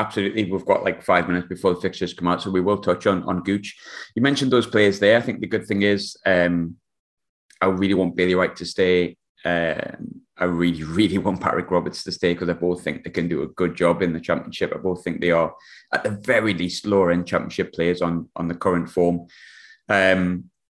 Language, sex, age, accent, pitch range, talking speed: English, male, 20-39, British, 85-100 Hz, 225 wpm